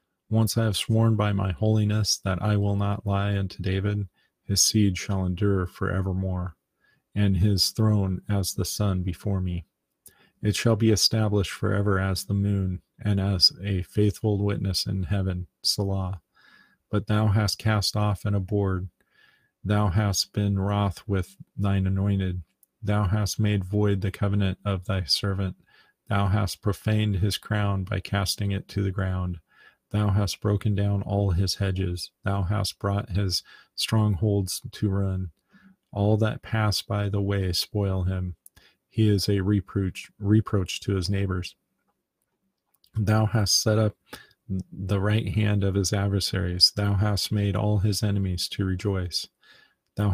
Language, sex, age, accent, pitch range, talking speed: English, male, 40-59, American, 95-105 Hz, 150 wpm